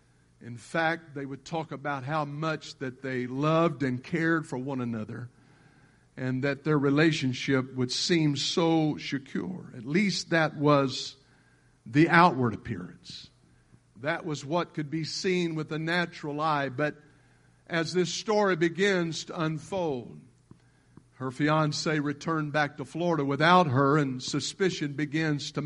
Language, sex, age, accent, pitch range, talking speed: English, male, 50-69, American, 140-170 Hz, 140 wpm